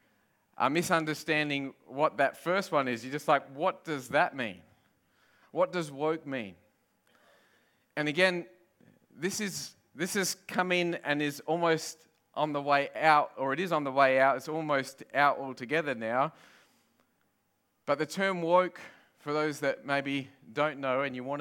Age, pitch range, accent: 30-49, 130-155 Hz, Australian